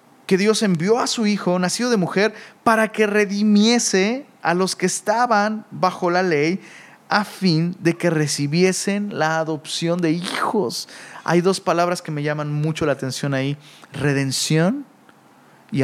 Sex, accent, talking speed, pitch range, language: male, Mexican, 150 wpm, 140-185 Hz, Spanish